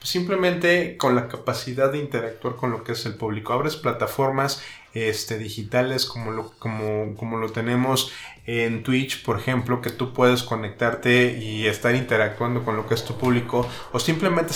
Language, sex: Spanish, male